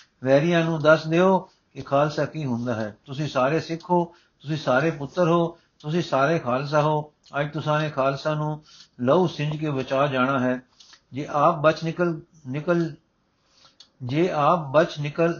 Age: 60-79